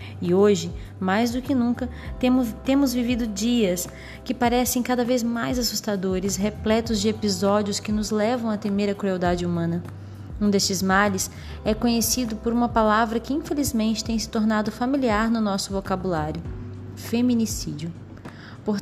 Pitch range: 190-245 Hz